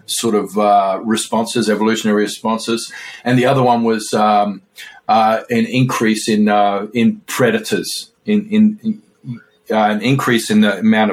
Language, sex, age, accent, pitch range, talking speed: English, male, 40-59, Australian, 105-125 Hz, 150 wpm